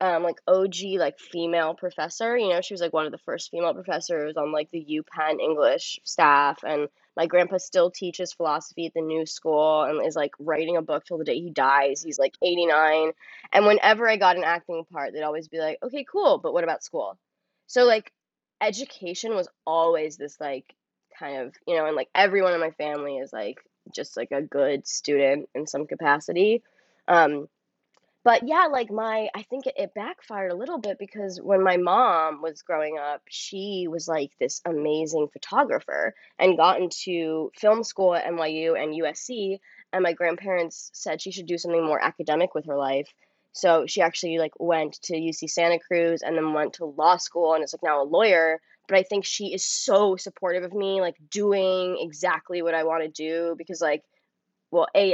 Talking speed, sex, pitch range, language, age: 195 wpm, female, 155-190 Hz, English, 20-39